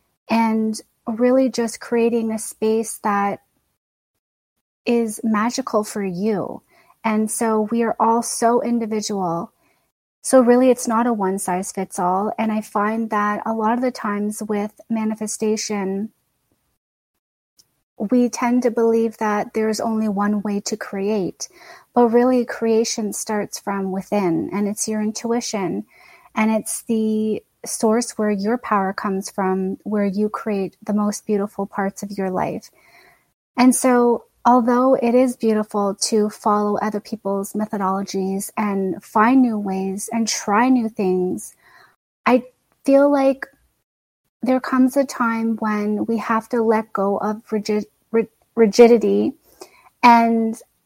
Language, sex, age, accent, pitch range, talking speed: English, female, 30-49, American, 210-235 Hz, 135 wpm